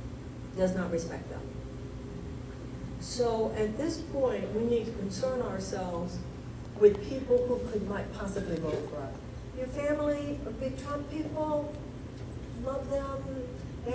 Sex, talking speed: female, 130 wpm